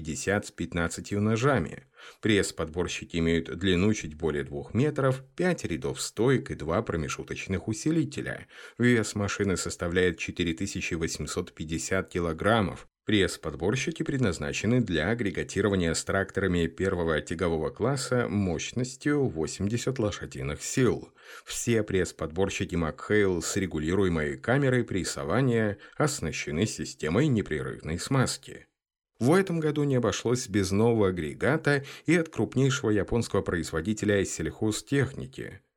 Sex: male